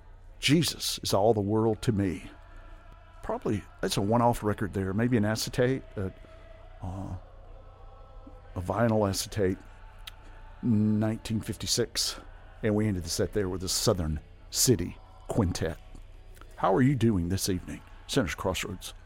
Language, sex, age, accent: English, male, 50-69, American